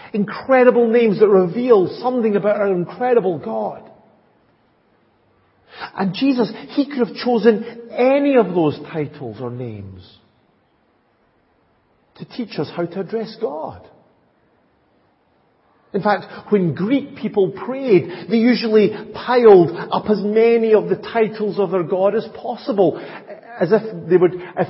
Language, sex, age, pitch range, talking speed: English, male, 50-69, 185-225 Hz, 130 wpm